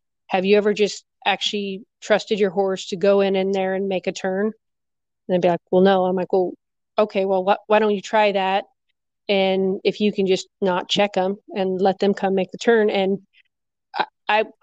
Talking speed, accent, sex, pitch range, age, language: 210 wpm, American, female, 195-250 Hz, 40-59, English